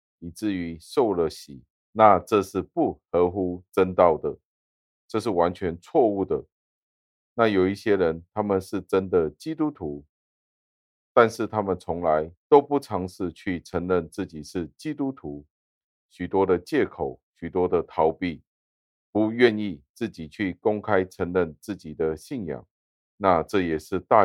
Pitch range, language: 80-95 Hz, Chinese